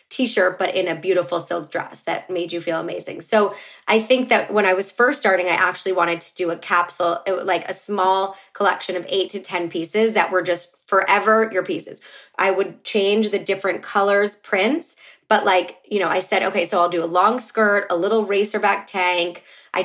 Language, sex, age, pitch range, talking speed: English, female, 20-39, 180-210 Hz, 210 wpm